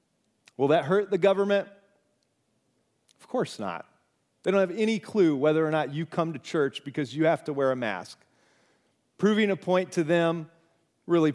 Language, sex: English, male